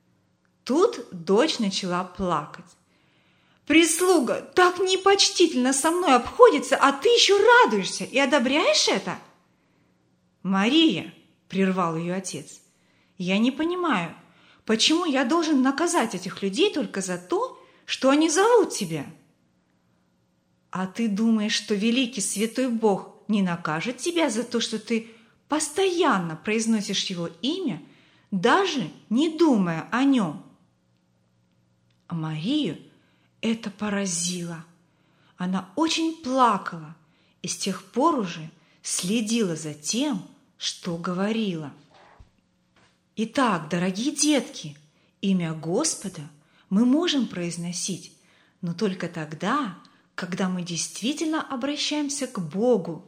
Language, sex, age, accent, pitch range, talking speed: Russian, female, 30-49, native, 175-275 Hz, 105 wpm